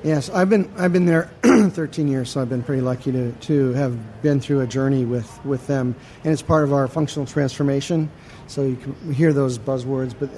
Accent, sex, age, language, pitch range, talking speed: American, male, 40-59, English, 130-145 Hz, 230 wpm